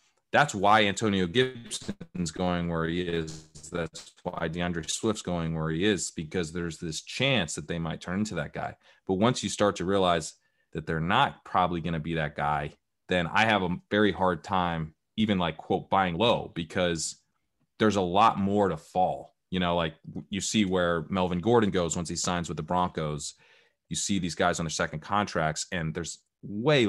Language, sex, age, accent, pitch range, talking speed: English, male, 30-49, American, 85-100 Hz, 195 wpm